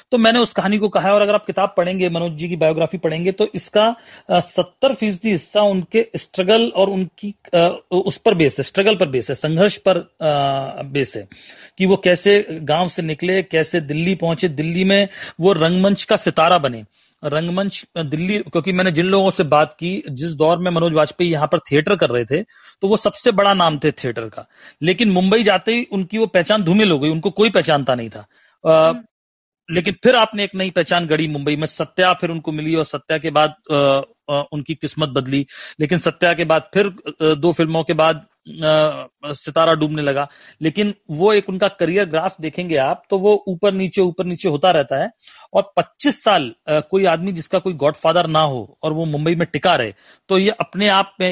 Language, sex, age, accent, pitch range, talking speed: Hindi, male, 30-49, native, 155-195 Hz, 195 wpm